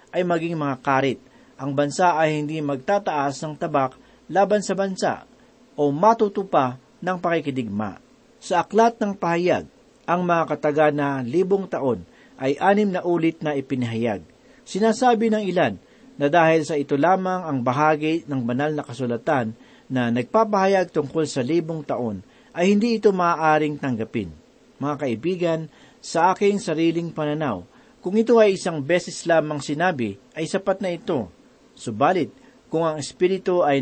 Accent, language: native, Filipino